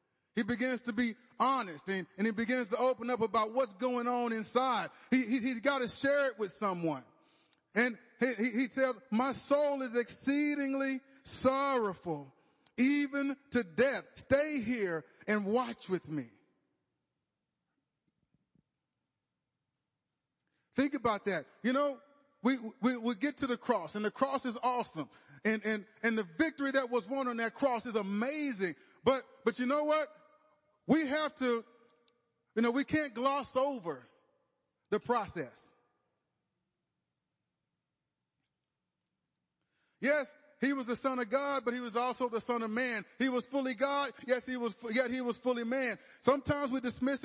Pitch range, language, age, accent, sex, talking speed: 215-270 Hz, English, 30-49, American, male, 155 wpm